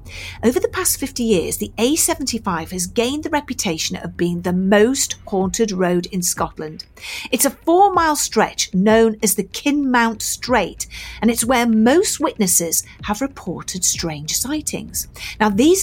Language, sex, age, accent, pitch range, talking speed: English, female, 40-59, British, 205-320 Hz, 150 wpm